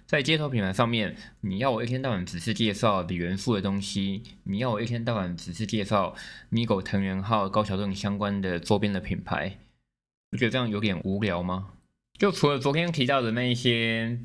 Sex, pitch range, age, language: male, 90-115 Hz, 20-39, Chinese